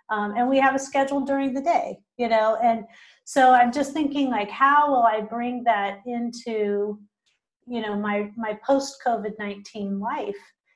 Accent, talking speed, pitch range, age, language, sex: American, 165 wpm, 220-275 Hz, 30-49, English, female